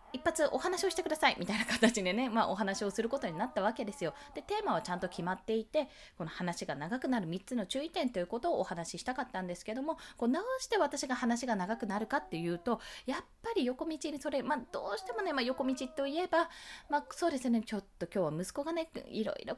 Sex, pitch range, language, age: female, 195-310 Hz, Japanese, 20-39